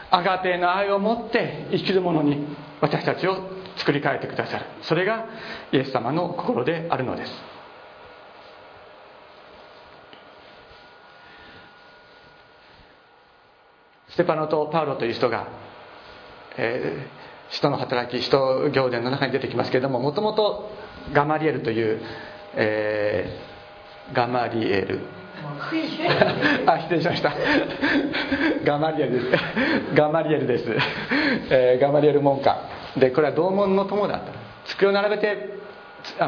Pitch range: 135-195 Hz